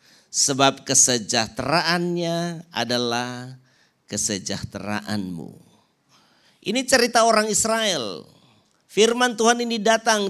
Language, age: Indonesian, 50-69